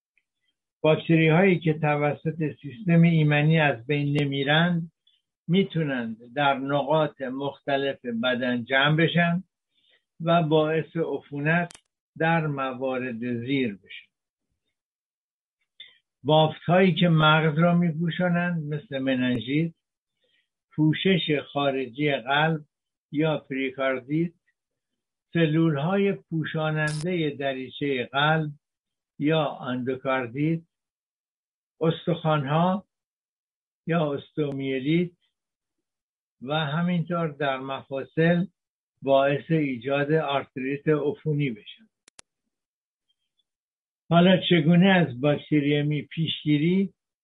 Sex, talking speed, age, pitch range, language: male, 75 wpm, 60-79, 135-165 Hz, Persian